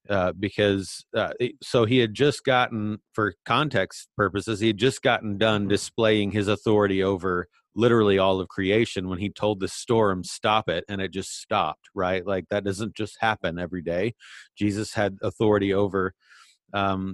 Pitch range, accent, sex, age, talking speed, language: 95-110 Hz, American, male, 30-49, 170 wpm, English